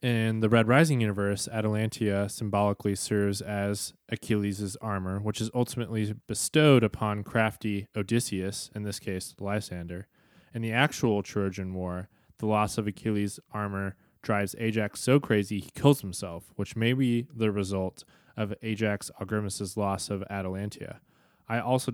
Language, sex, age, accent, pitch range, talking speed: English, male, 20-39, American, 100-115 Hz, 140 wpm